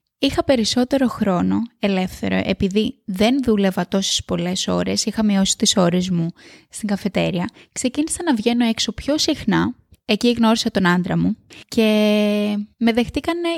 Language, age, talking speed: Greek, 20-39, 135 wpm